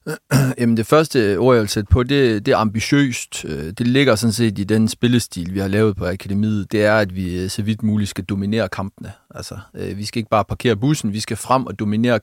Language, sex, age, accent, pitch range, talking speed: Danish, male, 40-59, native, 100-120 Hz, 210 wpm